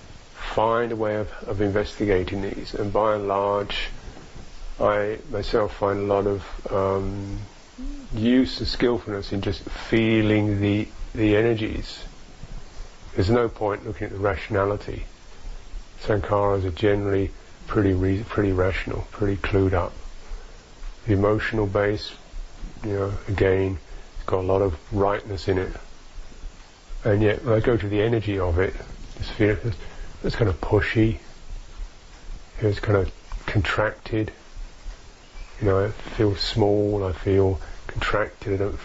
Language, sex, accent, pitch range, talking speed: English, male, British, 95-105 Hz, 135 wpm